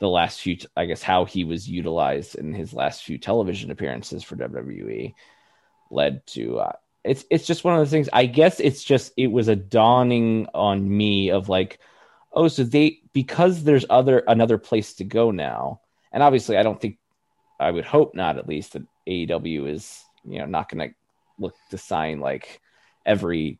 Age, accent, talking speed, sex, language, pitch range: 20-39, American, 190 wpm, male, English, 95-135 Hz